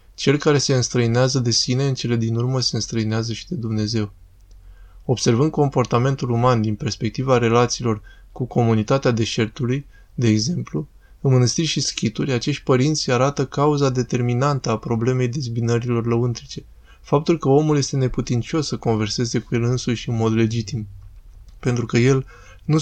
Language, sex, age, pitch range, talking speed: Romanian, male, 20-39, 110-135 Hz, 145 wpm